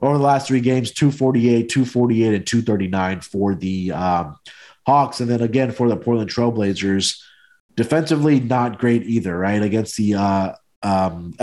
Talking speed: 145 wpm